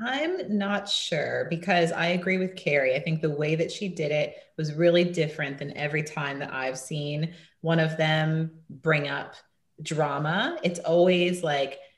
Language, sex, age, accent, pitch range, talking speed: English, female, 30-49, American, 140-175 Hz, 170 wpm